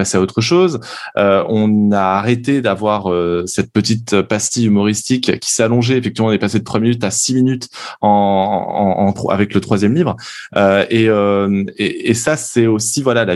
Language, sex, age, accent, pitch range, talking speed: French, male, 20-39, French, 100-125 Hz, 195 wpm